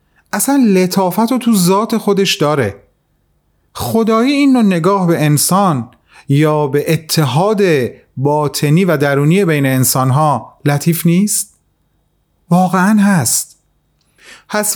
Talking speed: 100 wpm